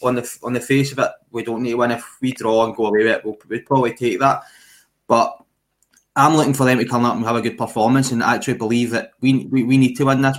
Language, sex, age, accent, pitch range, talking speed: English, male, 20-39, British, 115-135 Hz, 285 wpm